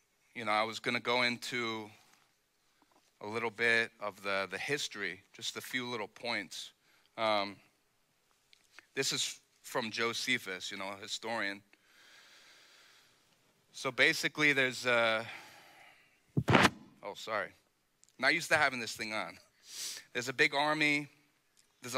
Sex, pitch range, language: male, 115-140 Hz, English